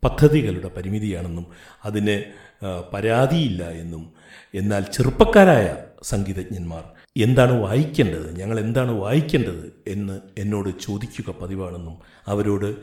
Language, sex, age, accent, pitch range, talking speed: Malayalam, male, 60-79, native, 100-135 Hz, 85 wpm